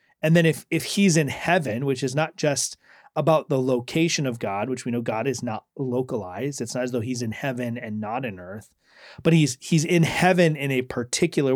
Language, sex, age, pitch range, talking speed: English, male, 30-49, 130-170 Hz, 220 wpm